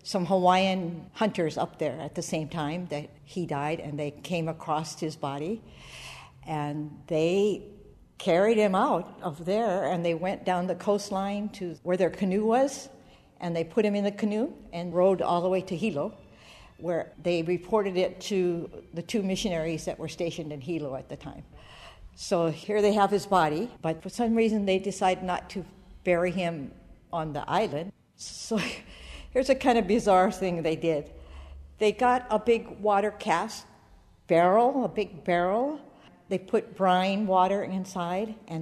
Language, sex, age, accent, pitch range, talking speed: English, female, 60-79, American, 155-190 Hz, 170 wpm